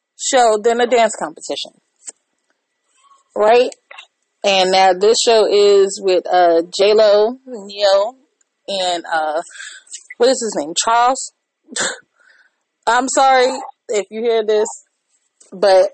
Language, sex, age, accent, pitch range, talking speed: English, female, 30-49, American, 190-235 Hz, 110 wpm